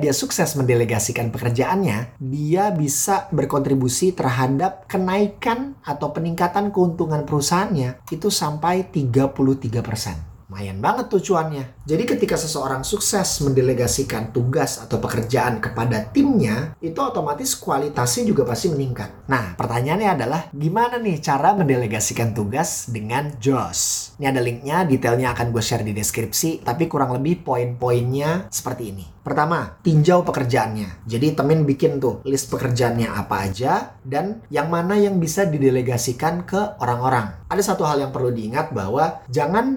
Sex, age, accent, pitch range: male, 30-49, native, 120-175 Hz